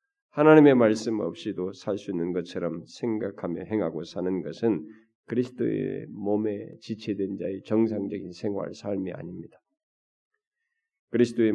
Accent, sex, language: native, male, Korean